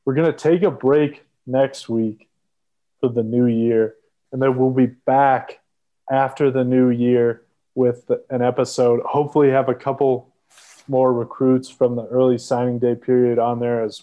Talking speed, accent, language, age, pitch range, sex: 165 wpm, American, English, 20-39, 120-135 Hz, male